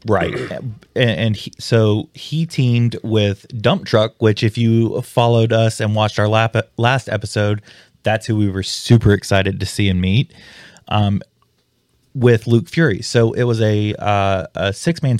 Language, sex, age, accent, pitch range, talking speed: English, male, 20-39, American, 100-120 Hz, 170 wpm